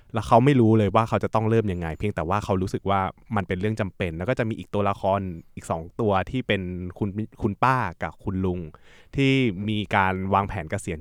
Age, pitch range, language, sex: 20-39, 90-110 Hz, Thai, male